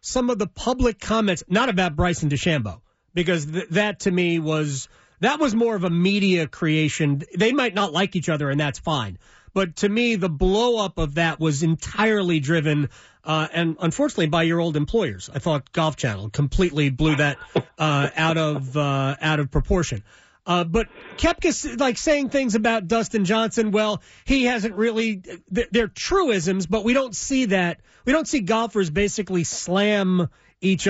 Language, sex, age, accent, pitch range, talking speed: English, male, 30-49, American, 160-215 Hz, 175 wpm